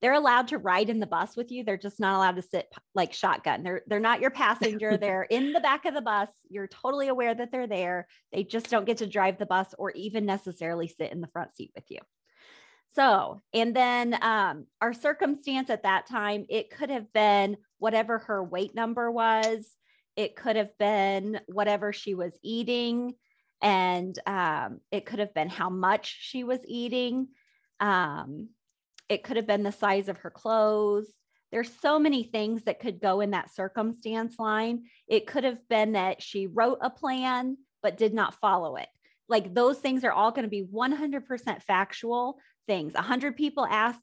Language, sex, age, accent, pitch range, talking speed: English, female, 30-49, American, 200-245 Hz, 190 wpm